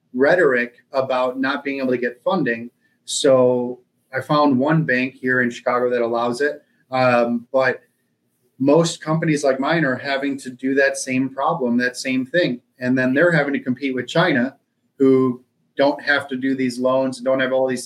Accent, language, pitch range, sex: American, English, 125-145 Hz, male